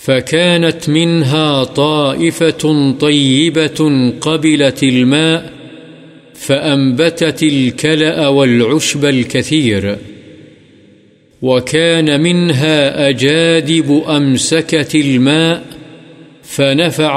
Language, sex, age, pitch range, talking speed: Urdu, male, 50-69, 130-160 Hz, 55 wpm